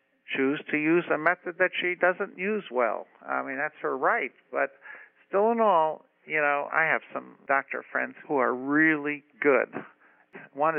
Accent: American